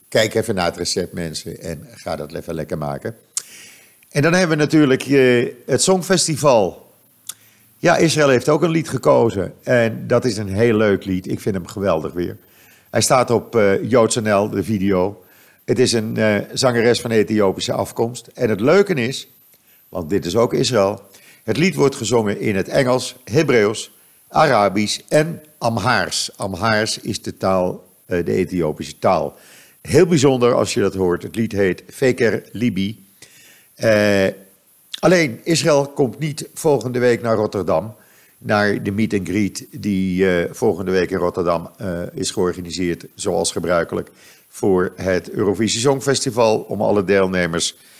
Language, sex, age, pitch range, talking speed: Dutch, male, 50-69, 95-130 Hz, 155 wpm